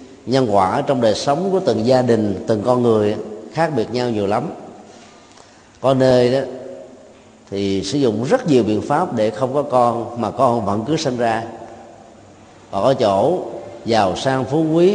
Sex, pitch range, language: male, 110-130 Hz, Vietnamese